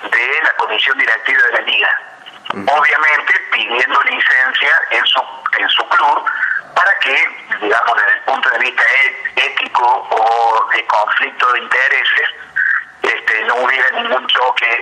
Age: 40-59